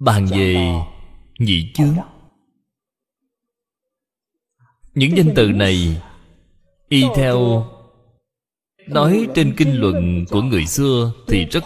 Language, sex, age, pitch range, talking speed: Vietnamese, male, 20-39, 90-150 Hz, 100 wpm